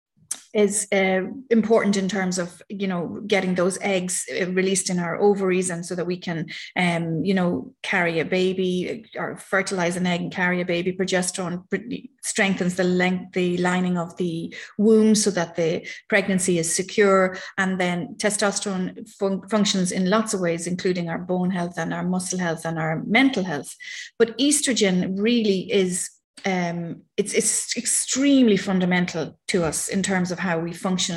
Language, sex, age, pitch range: English, female, 30-49, 180-210 Hz